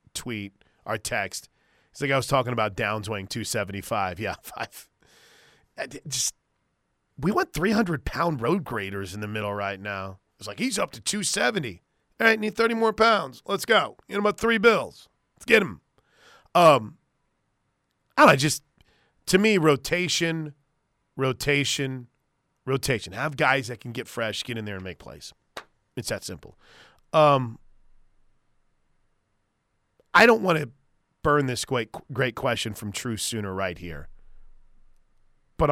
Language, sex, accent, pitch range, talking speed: English, male, American, 120-160 Hz, 150 wpm